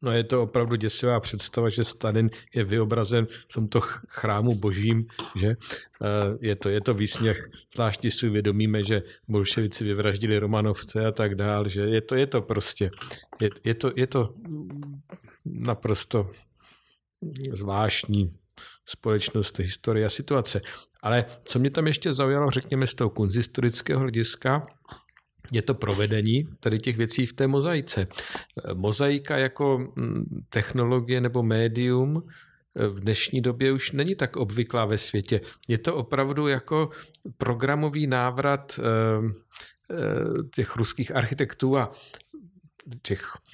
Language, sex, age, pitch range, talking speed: Czech, male, 50-69, 110-130 Hz, 130 wpm